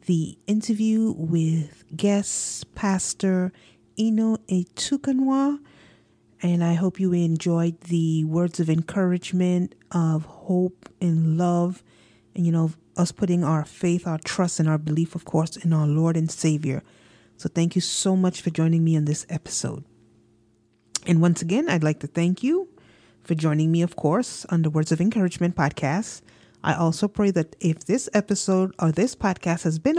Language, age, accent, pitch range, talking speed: English, 30-49, American, 165-220 Hz, 160 wpm